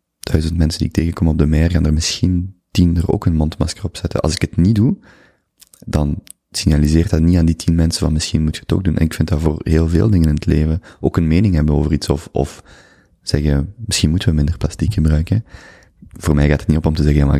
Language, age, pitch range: Dutch, 30-49, 75-85 Hz